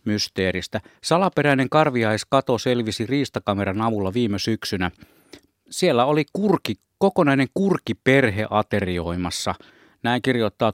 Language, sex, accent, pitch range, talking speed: Finnish, male, native, 95-130 Hz, 90 wpm